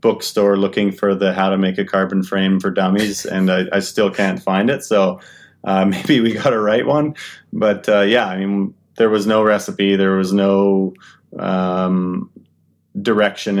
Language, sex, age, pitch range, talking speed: English, male, 30-49, 95-100 Hz, 180 wpm